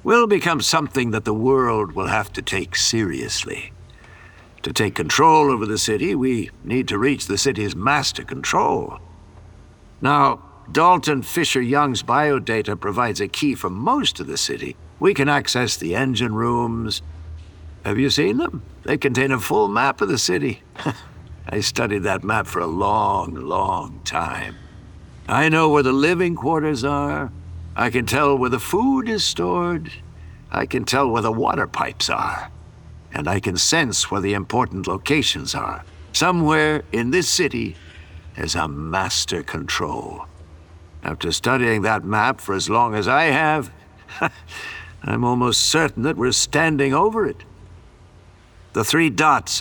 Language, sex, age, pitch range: English, male, 60-79, 95-140 Hz